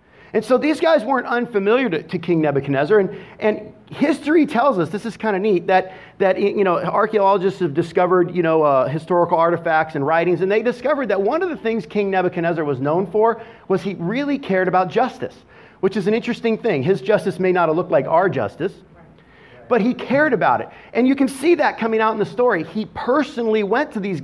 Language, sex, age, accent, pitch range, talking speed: English, male, 40-59, American, 170-225 Hz, 215 wpm